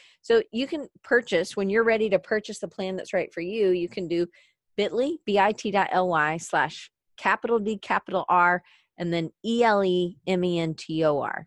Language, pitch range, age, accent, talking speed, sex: English, 165-210 Hz, 30-49, American, 155 wpm, female